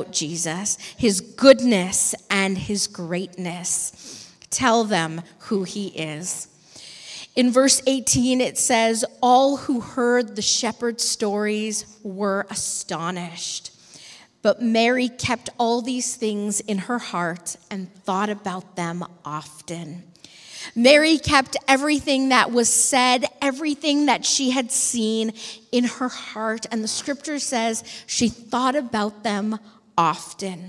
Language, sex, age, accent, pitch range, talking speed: English, female, 40-59, American, 205-265 Hz, 120 wpm